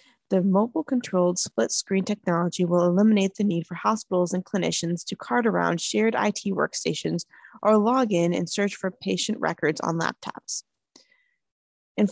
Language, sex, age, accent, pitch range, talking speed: English, female, 20-39, American, 170-215 Hz, 145 wpm